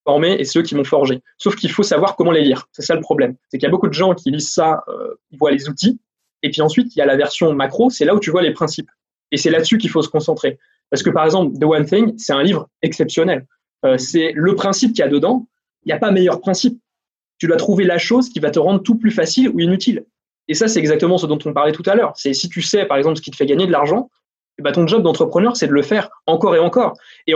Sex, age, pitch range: male, 20-39, 150-215 Hz